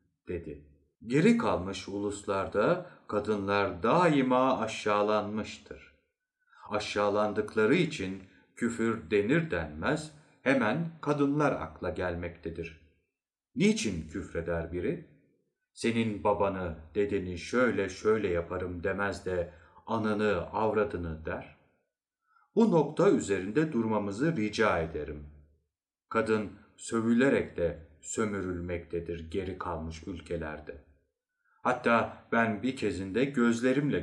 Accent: native